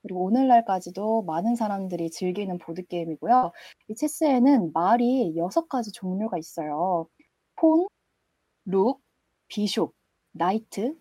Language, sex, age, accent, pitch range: Korean, female, 20-39, native, 175-255 Hz